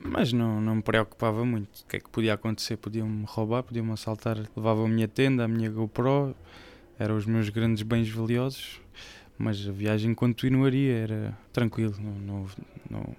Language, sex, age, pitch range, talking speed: Portuguese, male, 20-39, 110-130 Hz, 180 wpm